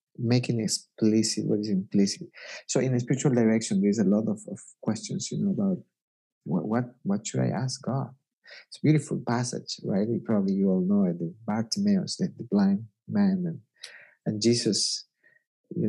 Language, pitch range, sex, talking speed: English, 110-175 Hz, male, 180 wpm